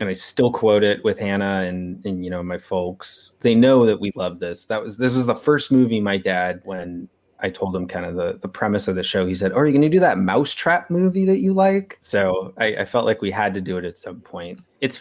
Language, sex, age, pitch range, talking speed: English, male, 30-49, 95-115 Hz, 275 wpm